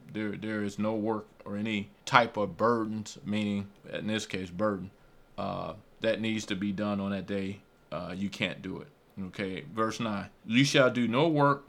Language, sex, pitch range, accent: English, male, 105-130 Hz, American